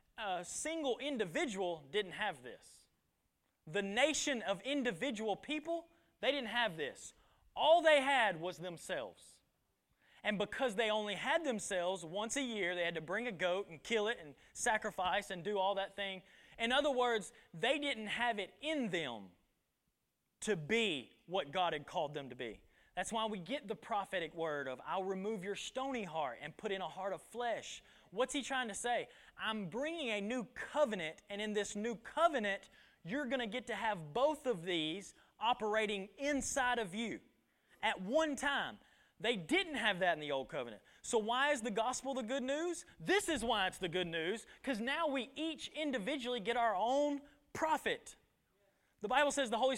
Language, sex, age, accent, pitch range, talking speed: English, male, 20-39, American, 195-275 Hz, 180 wpm